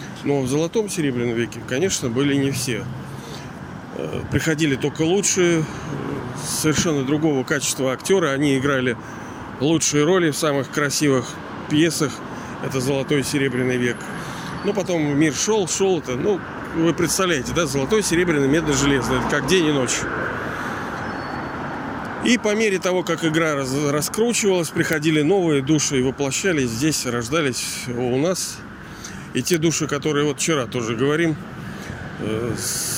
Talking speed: 130 wpm